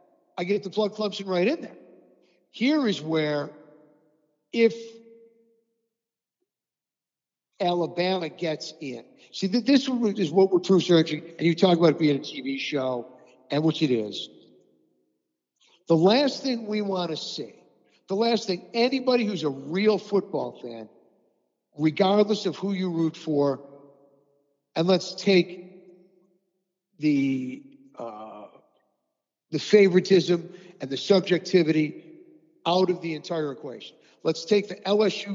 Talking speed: 130 wpm